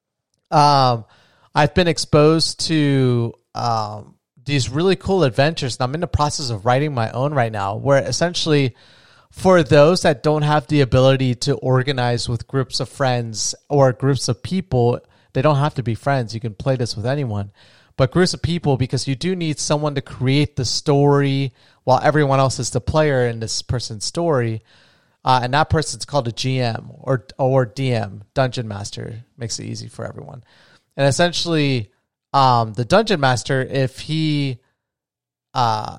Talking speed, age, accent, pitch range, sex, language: 170 wpm, 30-49, American, 125-150 Hz, male, English